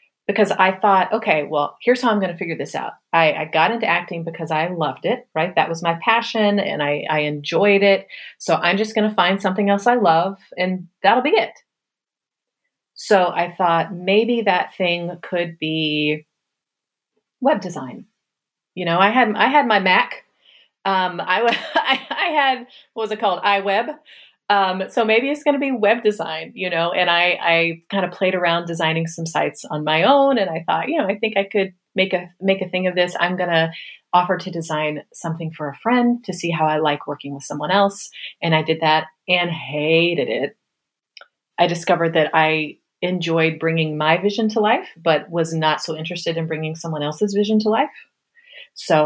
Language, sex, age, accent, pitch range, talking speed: English, female, 30-49, American, 165-210 Hz, 200 wpm